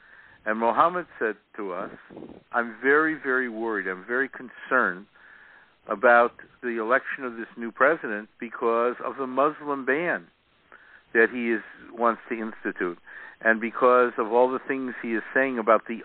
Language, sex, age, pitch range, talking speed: English, male, 60-79, 120-135 Hz, 155 wpm